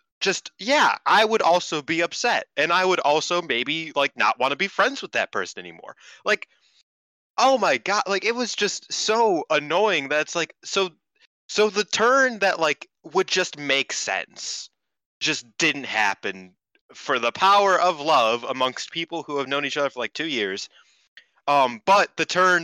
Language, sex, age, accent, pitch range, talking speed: English, male, 20-39, American, 160-245 Hz, 180 wpm